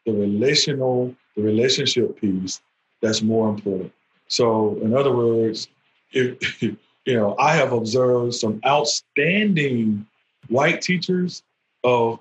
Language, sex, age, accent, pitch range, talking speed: English, male, 40-59, American, 110-150 Hz, 115 wpm